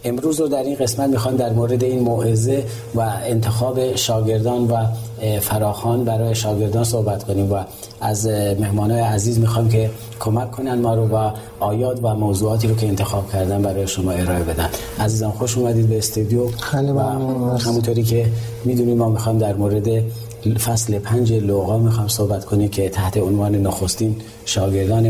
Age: 40-59